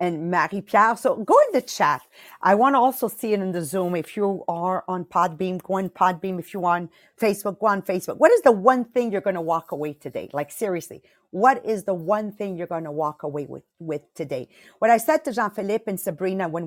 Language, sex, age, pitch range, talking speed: English, female, 40-59, 185-245 Hz, 225 wpm